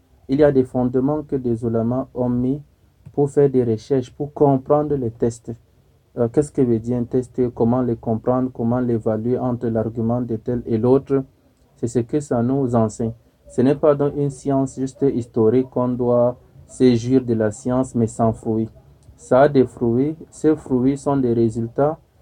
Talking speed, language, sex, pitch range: 185 wpm, Arabic, male, 115-135 Hz